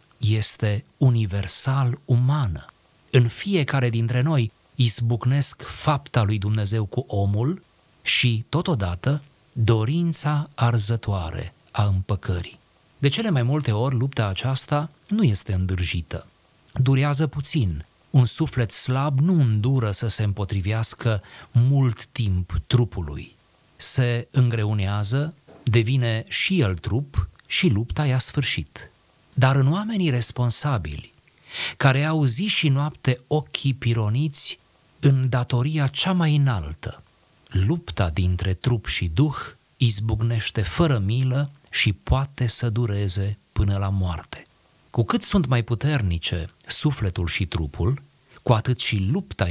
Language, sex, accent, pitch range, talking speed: Romanian, male, native, 100-135 Hz, 115 wpm